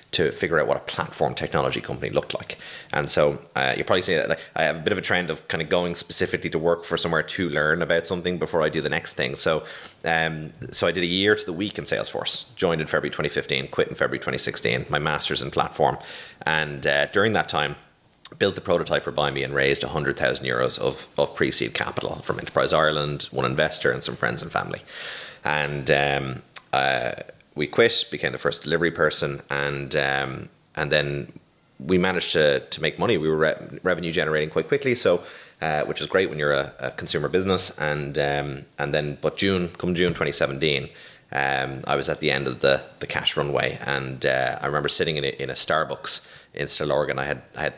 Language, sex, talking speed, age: English, male, 215 wpm, 30-49